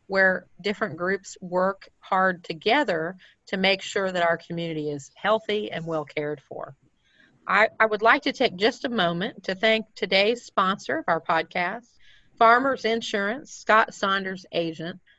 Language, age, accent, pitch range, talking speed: English, 40-59, American, 170-220 Hz, 155 wpm